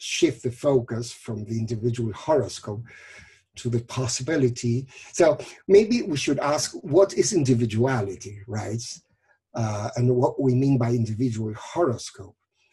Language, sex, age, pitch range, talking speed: English, male, 50-69, 120-150 Hz, 125 wpm